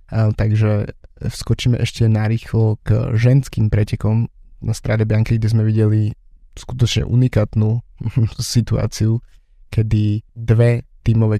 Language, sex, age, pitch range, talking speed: Slovak, male, 20-39, 110-135 Hz, 100 wpm